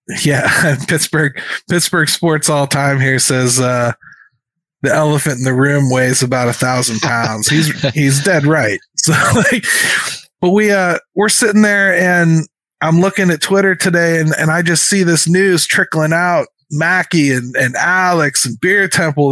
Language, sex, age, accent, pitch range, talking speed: English, male, 20-39, American, 135-180 Hz, 165 wpm